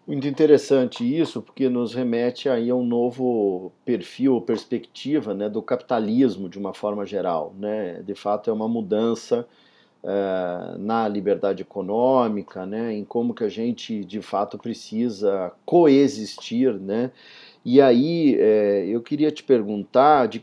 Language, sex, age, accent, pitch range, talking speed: Portuguese, male, 40-59, Brazilian, 110-135 Hz, 130 wpm